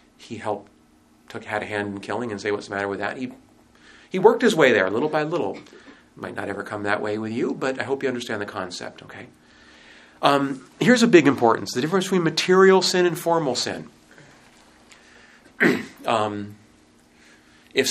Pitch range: 90-130 Hz